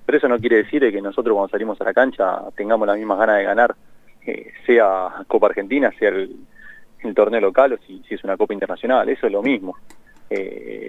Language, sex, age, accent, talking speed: Spanish, male, 30-49, Argentinian, 215 wpm